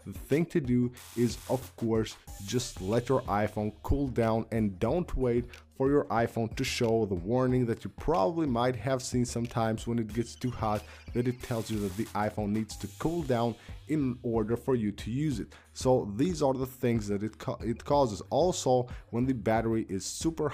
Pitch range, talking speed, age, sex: 105-125 Hz, 200 wpm, 20-39, male